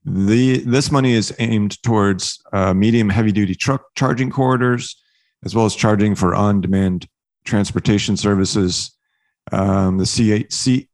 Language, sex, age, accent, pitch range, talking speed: English, male, 40-59, American, 95-120 Hz, 135 wpm